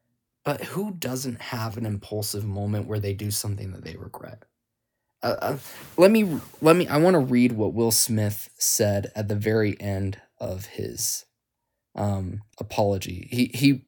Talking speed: 160 wpm